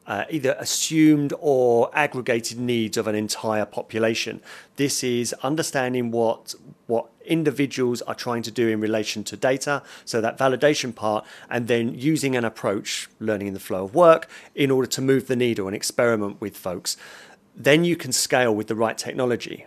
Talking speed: 175 wpm